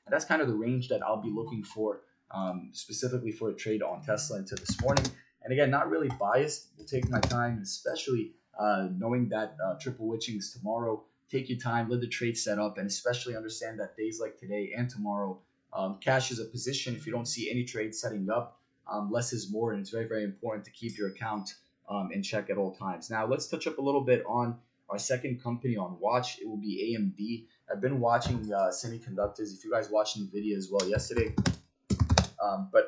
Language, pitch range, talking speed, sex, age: English, 105-125 Hz, 220 wpm, male, 20-39